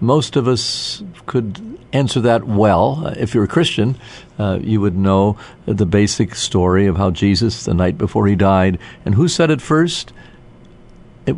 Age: 50-69